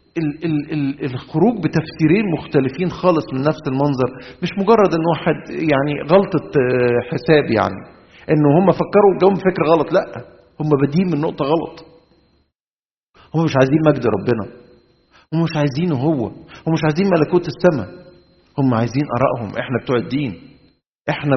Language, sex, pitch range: Arabic, male, 120-160 Hz